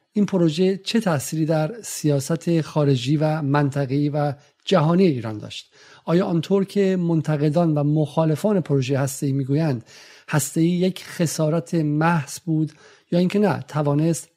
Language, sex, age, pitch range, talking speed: Persian, male, 50-69, 140-170 Hz, 130 wpm